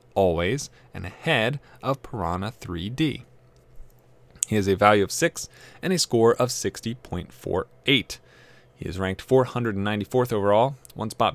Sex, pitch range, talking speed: male, 100-125 Hz, 125 wpm